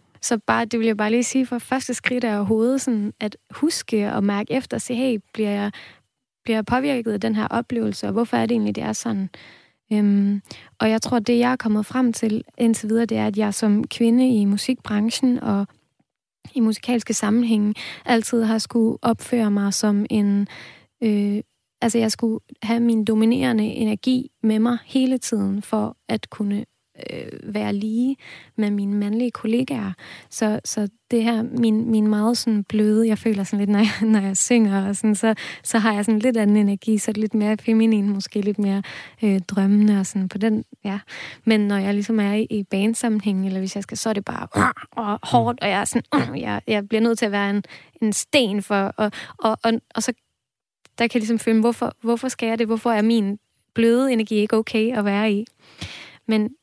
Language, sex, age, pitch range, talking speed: Danish, female, 20-39, 210-235 Hz, 205 wpm